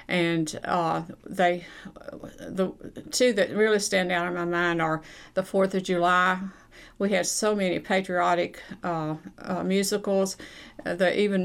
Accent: American